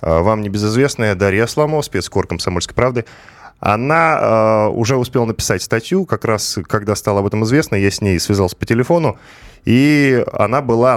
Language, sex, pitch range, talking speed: Russian, male, 100-135 Hz, 160 wpm